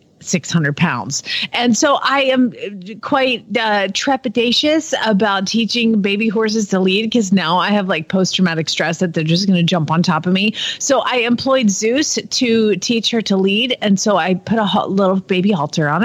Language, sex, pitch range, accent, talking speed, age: English, female, 185-245 Hz, American, 185 wpm, 30-49